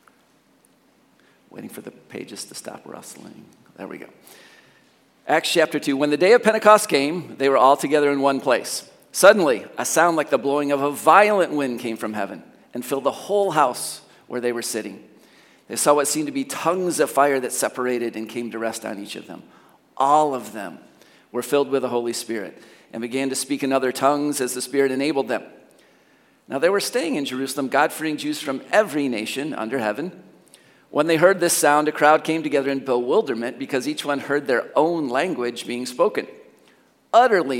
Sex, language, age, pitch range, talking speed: male, English, 40-59, 120-150 Hz, 195 wpm